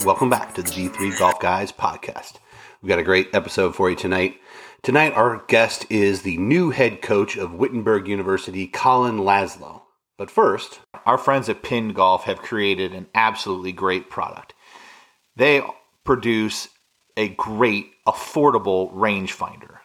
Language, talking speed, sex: English, 145 wpm, male